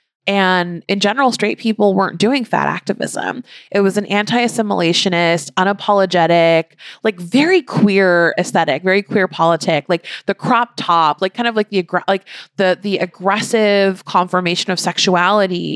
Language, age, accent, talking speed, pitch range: English, 20-39, American, 140 wpm, 180-240 Hz